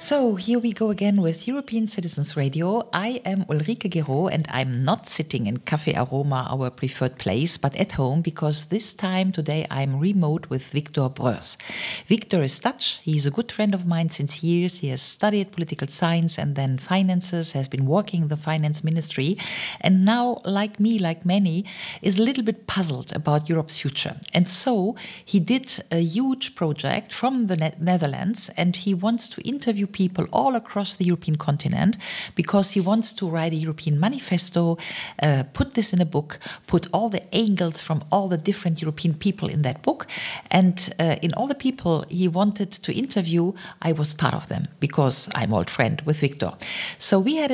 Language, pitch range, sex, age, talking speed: German, 155-210 Hz, female, 40-59, 185 wpm